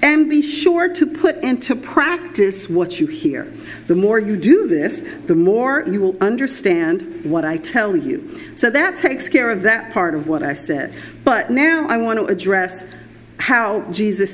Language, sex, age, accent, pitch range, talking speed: English, female, 50-69, American, 200-315 Hz, 180 wpm